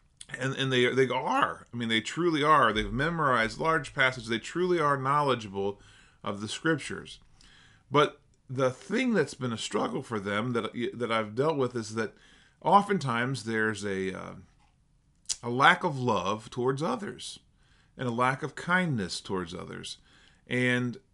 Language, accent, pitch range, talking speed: English, American, 115-145 Hz, 155 wpm